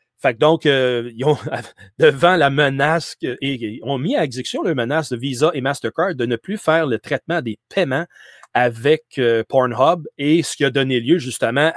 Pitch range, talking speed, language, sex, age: 120-155 Hz, 210 wpm, French, male, 30-49